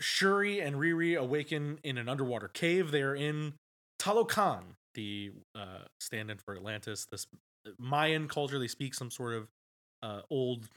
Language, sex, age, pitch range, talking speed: English, male, 20-39, 115-150 Hz, 145 wpm